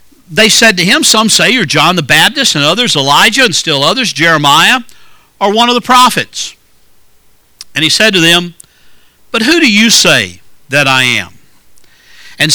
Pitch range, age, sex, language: 135-210 Hz, 60-79, male, English